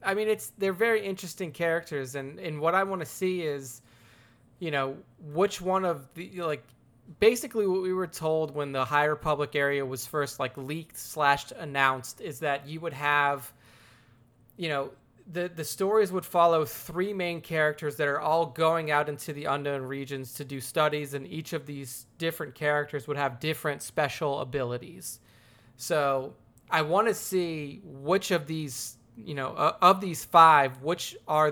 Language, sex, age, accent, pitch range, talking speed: English, male, 20-39, American, 135-165 Hz, 175 wpm